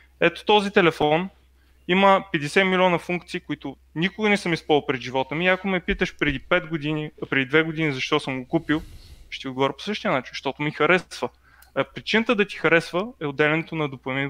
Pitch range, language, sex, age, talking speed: 140-175 Hz, Bulgarian, male, 20-39, 180 wpm